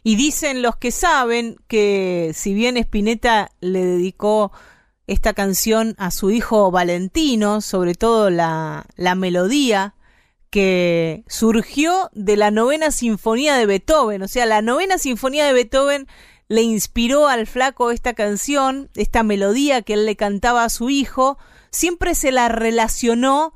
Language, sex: Spanish, female